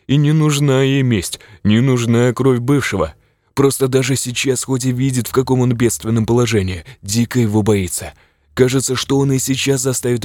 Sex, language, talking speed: male, Russian, 170 wpm